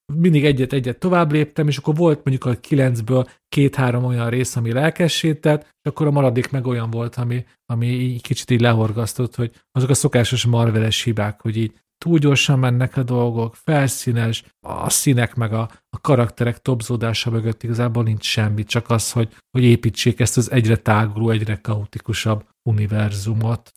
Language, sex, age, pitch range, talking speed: Hungarian, male, 40-59, 115-140 Hz, 165 wpm